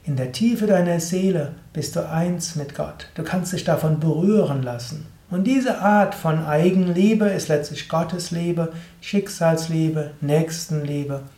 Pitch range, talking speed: 145-180 Hz, 135 wpm